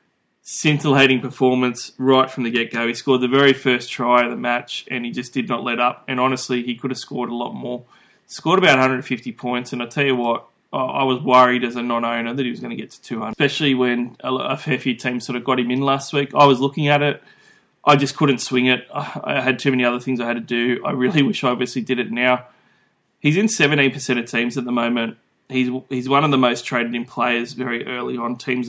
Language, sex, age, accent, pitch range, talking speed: English, male, 20-39, Australian, 120-135 Hz, 245 wpm